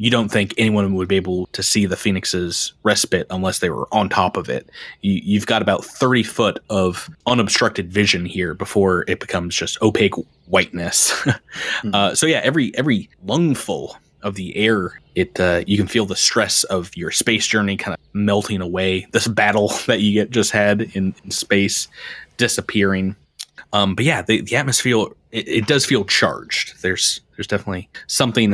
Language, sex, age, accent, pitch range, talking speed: English, male, 20-39, American, 95-110 Hz, 180 wpm